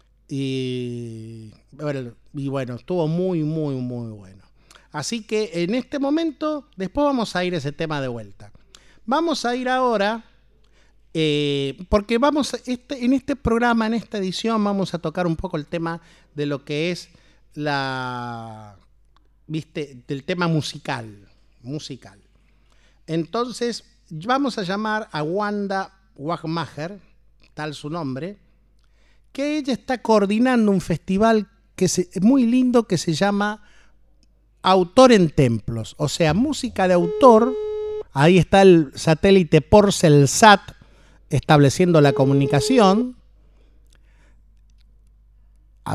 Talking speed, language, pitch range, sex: 125 wpm, Spanish, 135-215 Hz, male